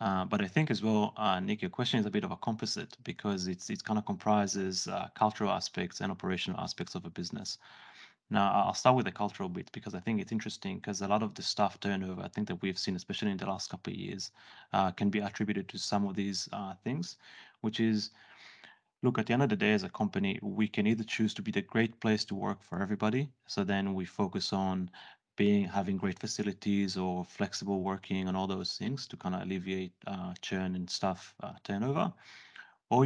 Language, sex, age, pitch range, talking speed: English, male, 30-49, 95-110 Hz, 225 wpm